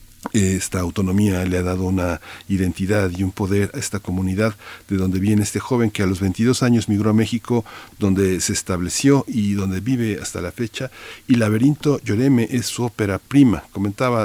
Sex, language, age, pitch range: male, Spanish, 50-69, 95-105 Hz